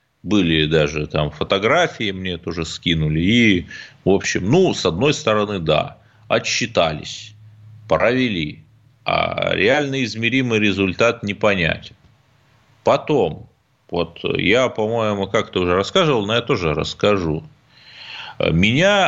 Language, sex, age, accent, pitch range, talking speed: Russian, male, 30-49, native, 85-120 Hz, 110 wpm